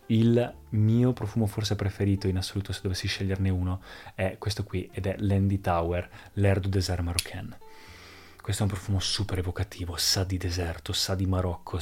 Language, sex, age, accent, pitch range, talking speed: Italian, male, 20-39, native, 95-110 Hz, 175 wpm